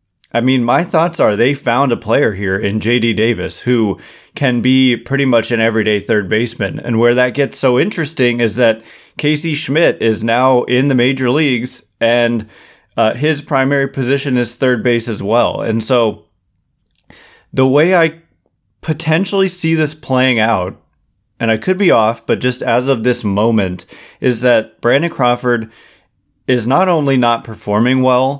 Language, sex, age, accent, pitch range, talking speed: English, male, 30-49, American, 110-135 Hz, 165 wpm